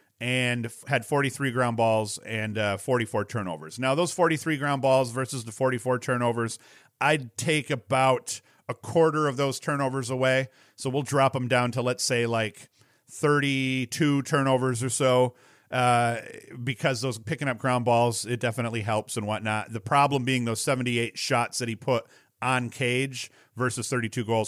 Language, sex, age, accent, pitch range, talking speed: English, male, 40-59, American, 115-140 Hz, 160 wpm